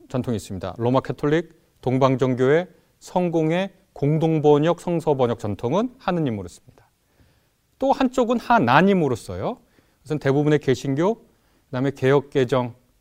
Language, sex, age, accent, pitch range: Korean, male, 30-49, native, 125-205 Hz